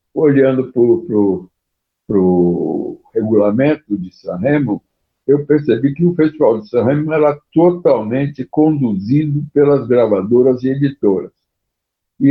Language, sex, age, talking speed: Portuguese, male, 60-79, 100 wpm